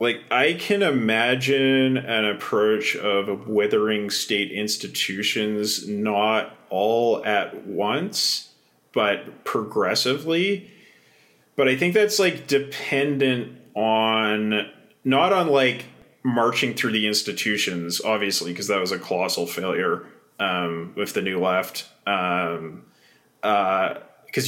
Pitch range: 100-140 Hz